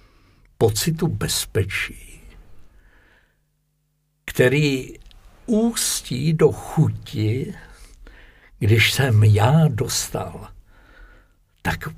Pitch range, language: 105-150 Hz, Czech